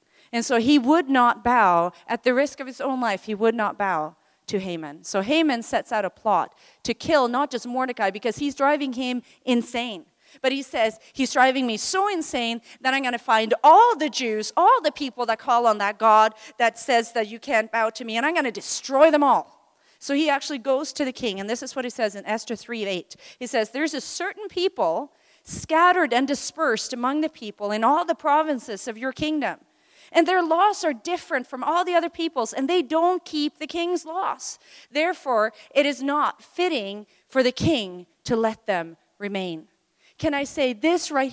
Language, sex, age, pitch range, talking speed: English, female, 40-59, 235-310 Hz, 210 wpm